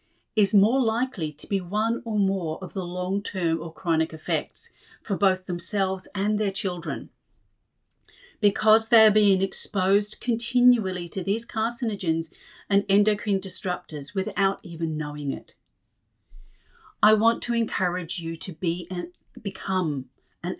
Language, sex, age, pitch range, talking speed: English, female, 40-59, 180-220 Hz, 135 wpm